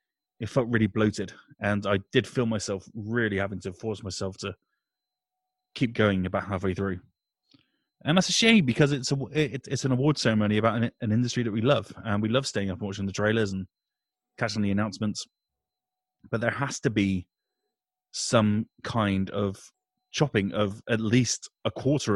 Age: 30-49